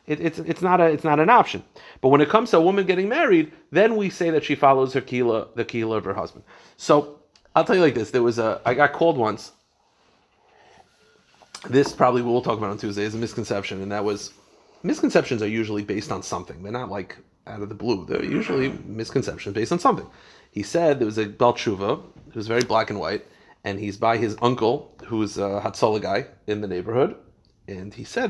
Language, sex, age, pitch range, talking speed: English, male, 30-49, 105-145 Hz, 220 wpm